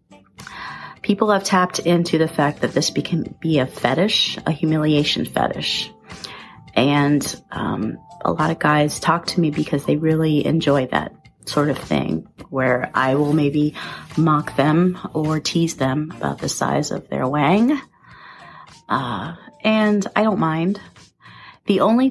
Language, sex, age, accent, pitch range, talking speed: English, female, 30-49, American, 145-180 Hz, 145 wpm